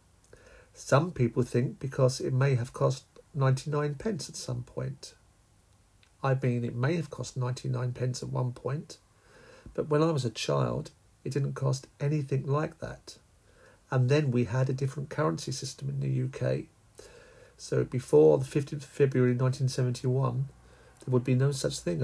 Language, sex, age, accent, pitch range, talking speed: English, male, 50-69, British, 125-145 Hz, 165 wpm